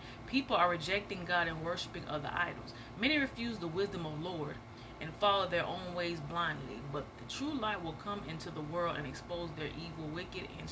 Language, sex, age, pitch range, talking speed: English, female, 30-49, 155-210 Hz, 195 wpm